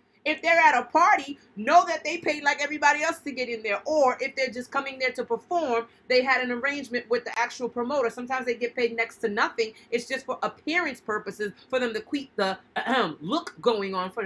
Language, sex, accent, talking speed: English, female, American, 225 wpm